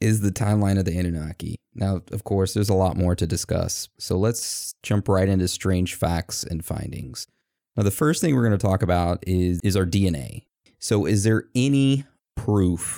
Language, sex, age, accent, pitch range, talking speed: English, male, 30-49, American, 90-110 Hz, 190 wpm